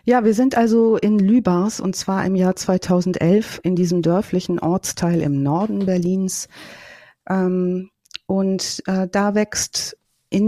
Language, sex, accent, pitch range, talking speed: German, female, German, 155-195 Hz, 125 wpm